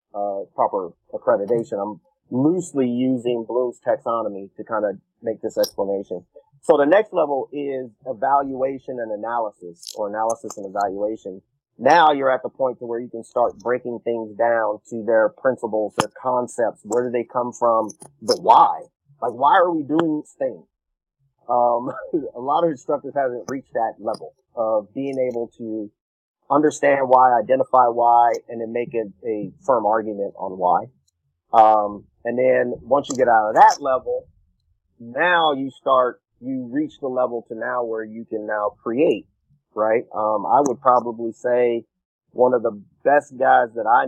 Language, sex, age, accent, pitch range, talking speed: English, male, 30-49, American, 110-135 Hz, 165 wpm